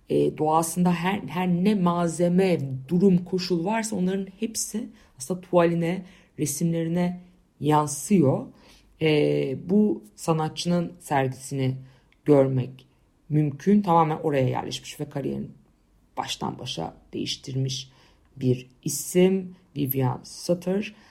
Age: 50-69